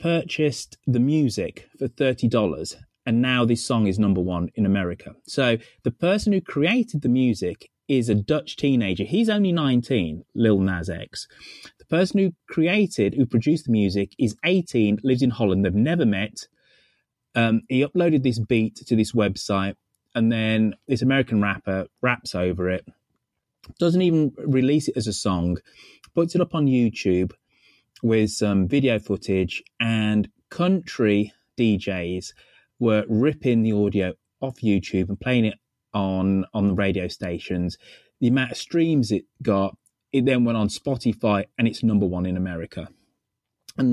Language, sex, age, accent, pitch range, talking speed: English, male, 30-49, British, 100-135 Hz, 155 wpm